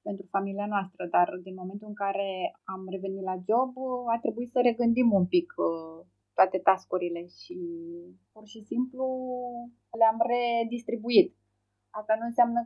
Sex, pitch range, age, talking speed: female, 185-230 Hz, 20-39, 135 wpm